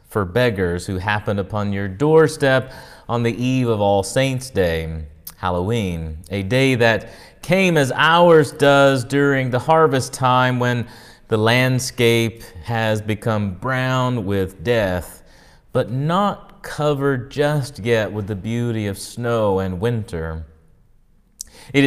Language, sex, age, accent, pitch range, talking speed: English, male, 30-49, American, 100-135 Hz, 130 wpm